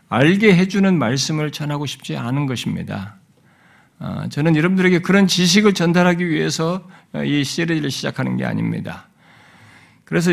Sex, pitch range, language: male, 140-175 Hz, Korean